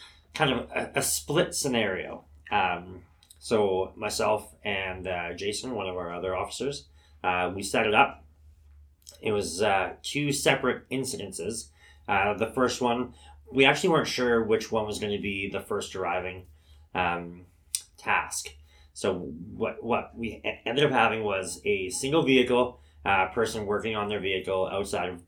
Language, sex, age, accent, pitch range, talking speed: English, male, 30-49, American, 80-110 Hz, 155 wpm